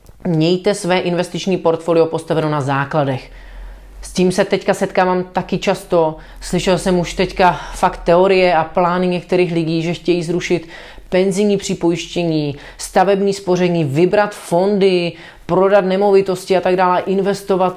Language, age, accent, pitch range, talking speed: Czech, 30-49, native, 165-185 Hz, 135 wpm